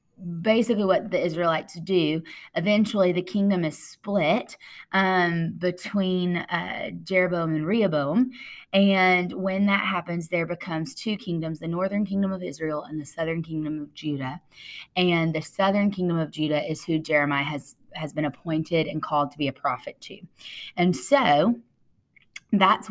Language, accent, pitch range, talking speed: English, American, 155-190 Hz, 150 wpm